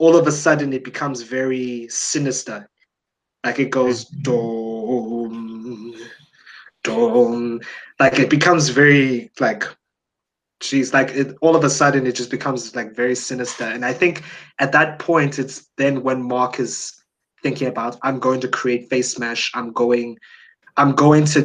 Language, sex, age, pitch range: English, male, 20-39, 125-140 Hz